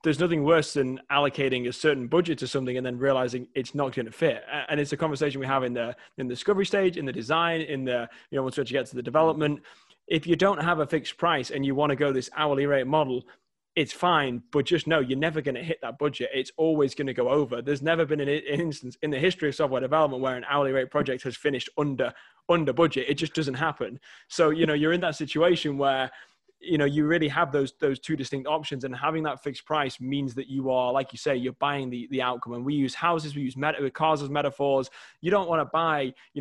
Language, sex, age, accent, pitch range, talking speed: English, male, 20-39, British, 130-155 Hz, 250 wpm